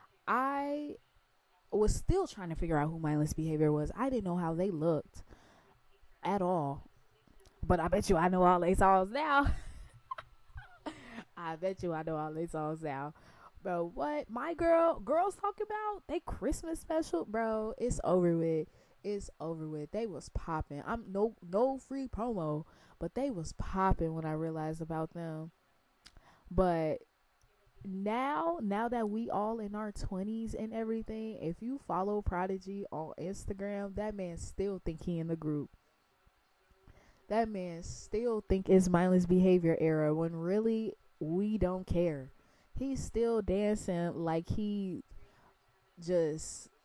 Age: 20-39